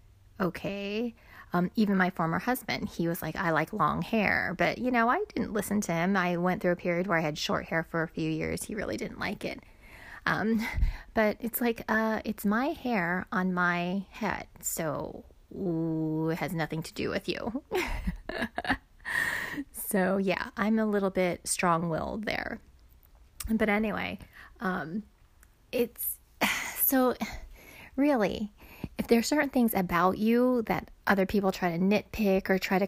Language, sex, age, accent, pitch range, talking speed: English, female, 30-49, American, 180-225 Hz, 160 wpm